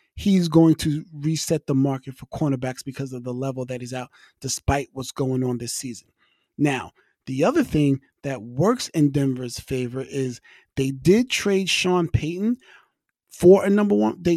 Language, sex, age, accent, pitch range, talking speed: English, male, 30-49, American, 135-175 Hz, 170 wpm